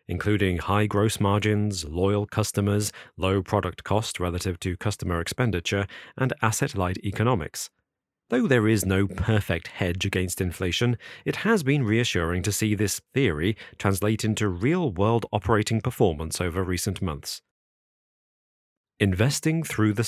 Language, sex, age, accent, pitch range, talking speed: English, male, 40-59, British, 95-120 Hz, 130 wpm